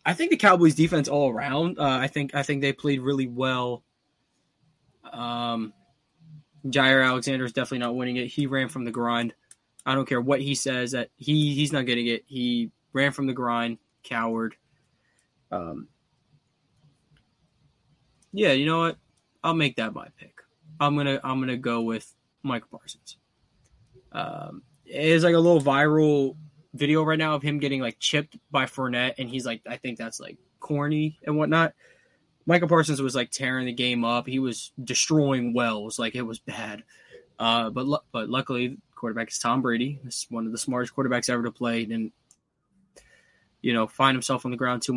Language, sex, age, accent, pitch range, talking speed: English, male, 20-39, American, 120-150 Hz, 185 wpm